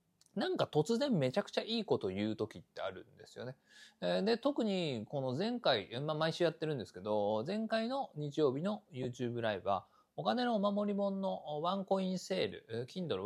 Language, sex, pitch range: Japanese, male, 115-185 Hz